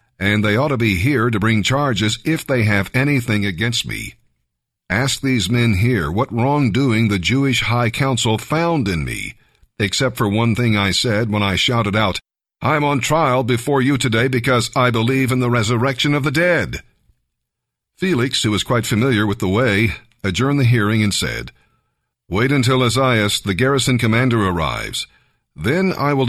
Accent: American